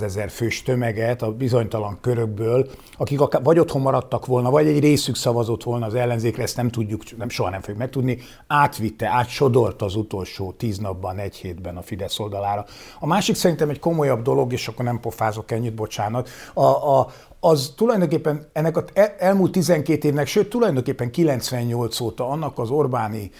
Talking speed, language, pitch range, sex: 170 wpm, Hungarian, 115-150 Hz, male